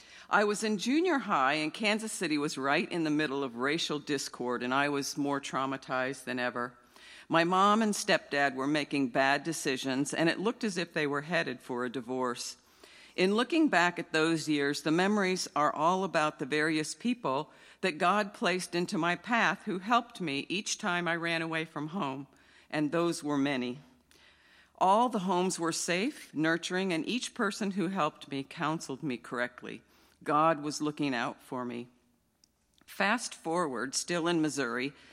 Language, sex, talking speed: English, female, 175 wpm